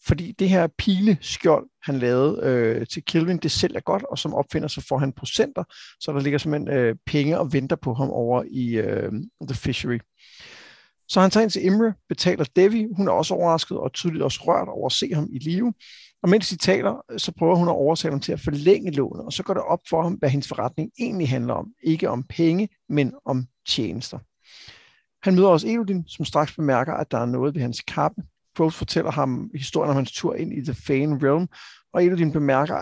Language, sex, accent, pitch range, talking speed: Danish, male, native, 140-190 Hz, 220 wpm